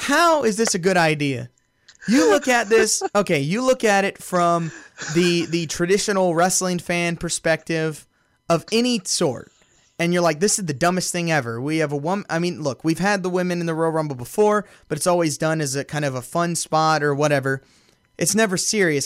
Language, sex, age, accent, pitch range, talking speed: English, male, 20-39, American, 155-205 Hz, 210 wpm